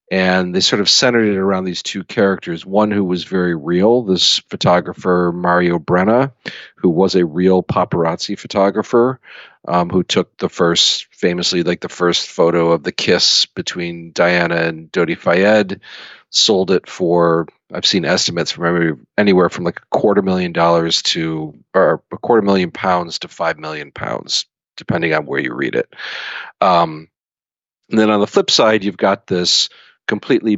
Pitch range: 85-100 Hz